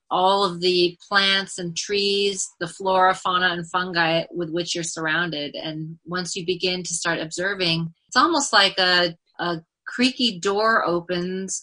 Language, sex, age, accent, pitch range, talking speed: English, female, 30-49, American, 170-205 Hz, 155 wpm